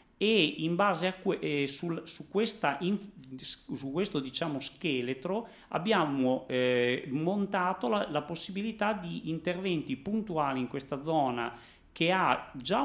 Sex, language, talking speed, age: male, Italian, 130 wpm, 40-59